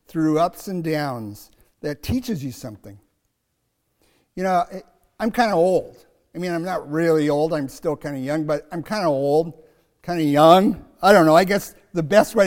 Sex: male